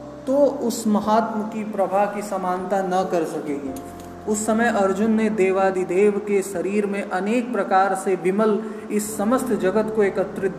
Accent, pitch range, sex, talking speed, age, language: native, 195-225 Hz, male, 155 wpm, 20-39, Hindi